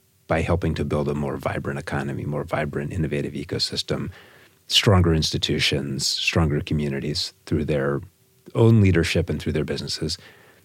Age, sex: 30-49, male